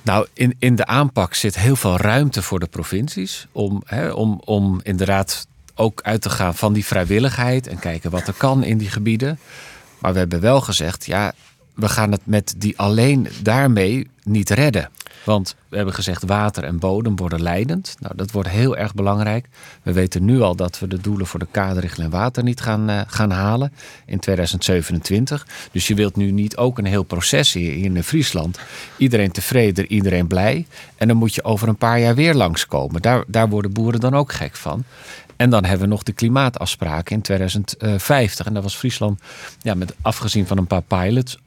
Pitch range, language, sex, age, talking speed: 95-120 Hz, Dutch, male, 40-59, 190 wpm